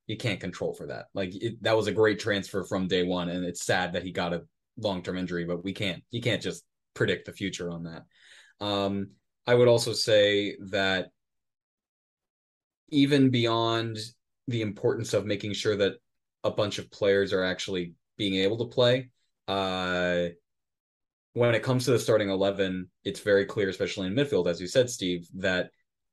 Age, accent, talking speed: 20-39, American, 180 wpm